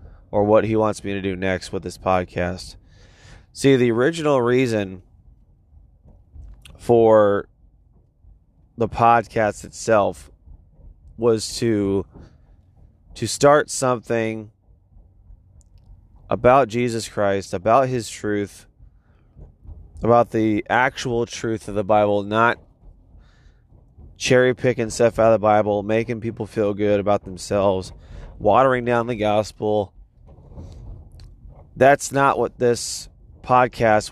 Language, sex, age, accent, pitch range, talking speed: English, male, 20-39, American, 90-115 Hz, 105 wpm